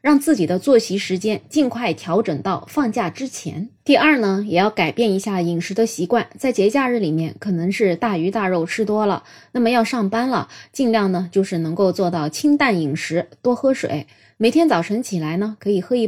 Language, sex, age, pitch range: Chinese, female, 20-39, 185-265 Hz